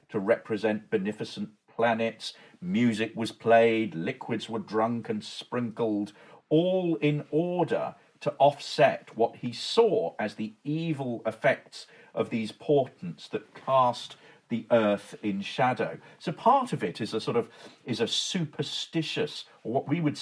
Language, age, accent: English, 50-69, British